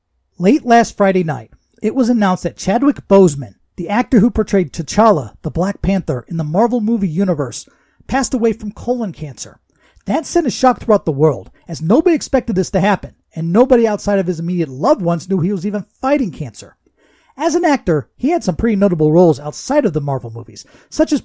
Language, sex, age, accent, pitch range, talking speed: English, male, 40-59, American, 165-235 Hz, 200 wpm